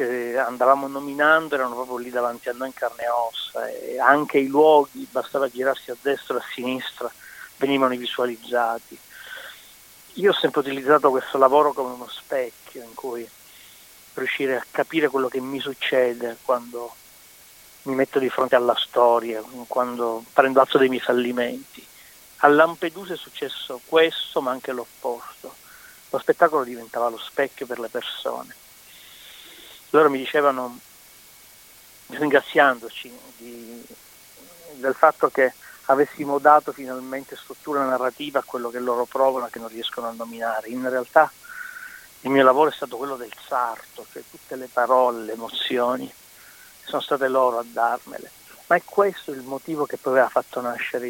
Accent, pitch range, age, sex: native, 120-145 Hz, 30-49, male